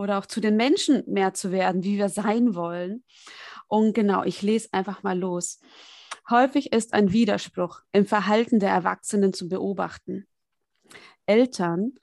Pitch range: 190-225 Hz